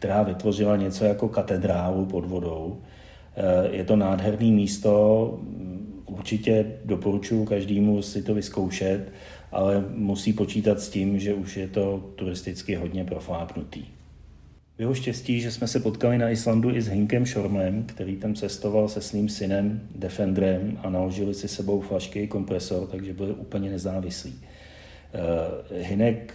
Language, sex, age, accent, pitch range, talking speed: Czech, male, 40-59, native, 95-110 Hz, 135 wpm